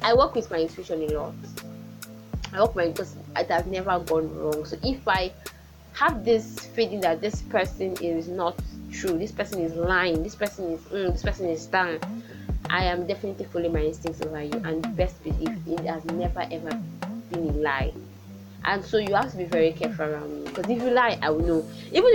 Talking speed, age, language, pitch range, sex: 210 wpm, 20-39, English, 165-225 Hz, female